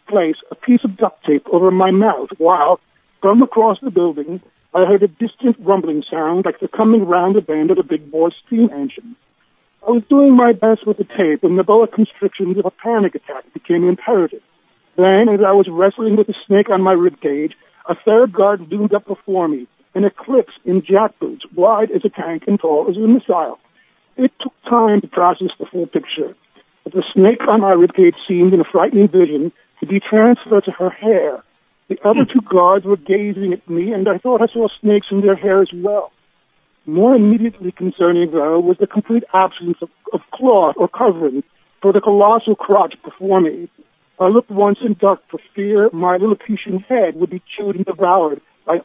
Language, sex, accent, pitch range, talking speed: English, male, American, 180-220 Hz, 200 wpm